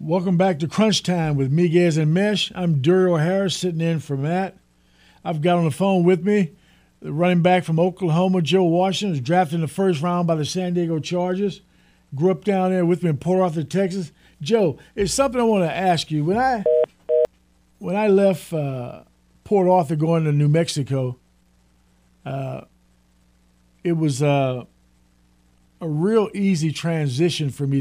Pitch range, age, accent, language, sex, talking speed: 125-180 Hz, 50-69, American, English, male, 175 wpm